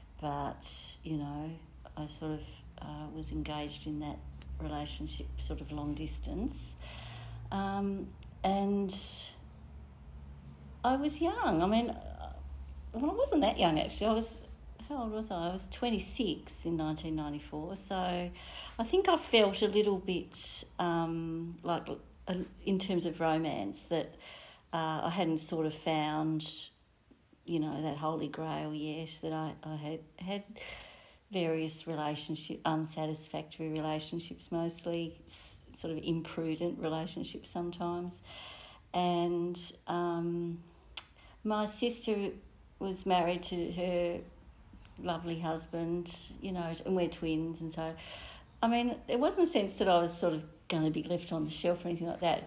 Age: 40-59